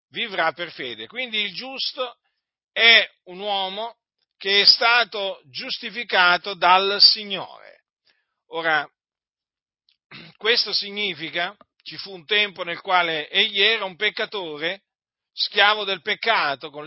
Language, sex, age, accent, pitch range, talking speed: Italian, male, 40-59, native, 175-235 Hz, 115 wpm